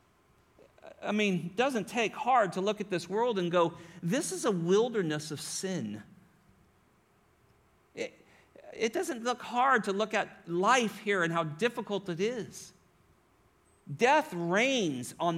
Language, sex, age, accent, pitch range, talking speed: English, male, 50-69, American, 175-225 Hz, 145 wpm